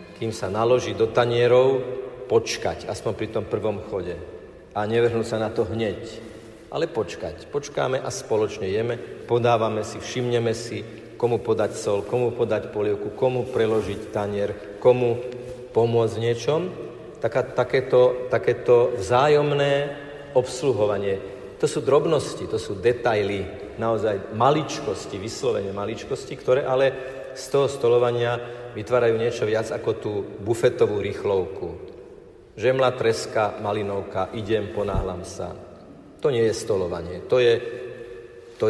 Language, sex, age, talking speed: Slovak, male, 50-69, 125 wpm